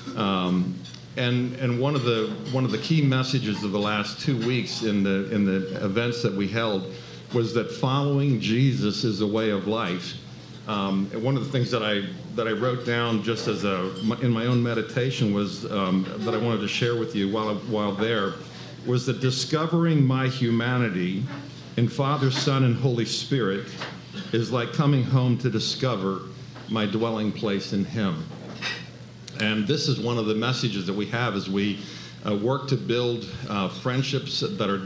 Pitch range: 105-130 Hz